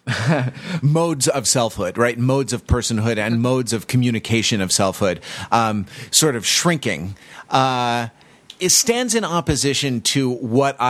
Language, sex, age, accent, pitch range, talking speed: English, male, 30-49, American, 115-150 Hz, 130 wpm